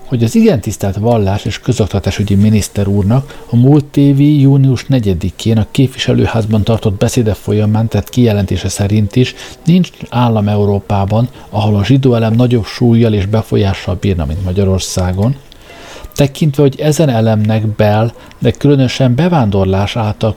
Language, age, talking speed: Hungarian, 50-69, 135 wpm